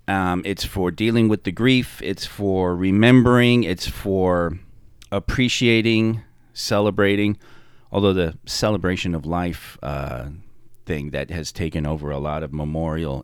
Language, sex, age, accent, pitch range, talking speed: English, male, 30-49, American, 85-110 Hz, 130 wpm